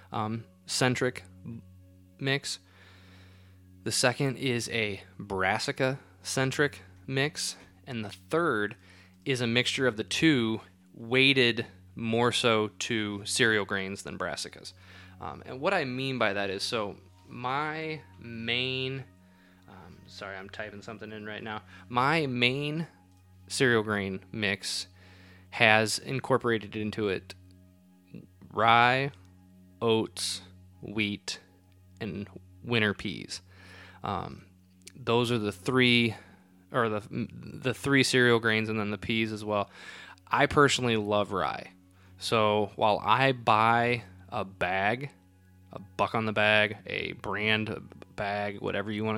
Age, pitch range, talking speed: 20-39, 95-120 Hz, 120 wpm